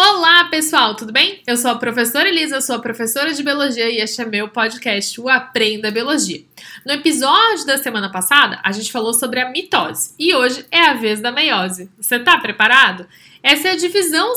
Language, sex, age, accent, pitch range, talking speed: Portuguese, female, 10-29, Brazilian, 230-320 Hz, 195 wpm